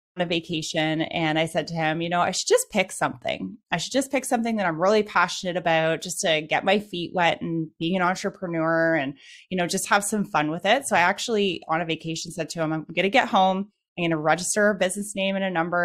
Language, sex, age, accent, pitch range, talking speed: English, female, 20-39, American, 165-200 Hz, 255 wpm